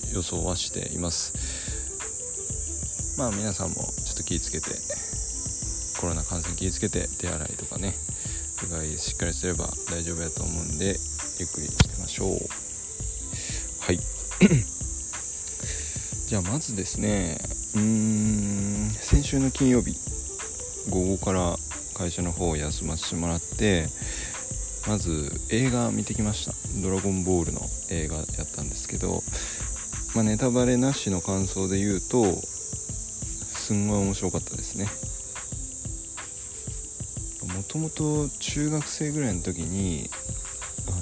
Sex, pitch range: male, 85-110 Hz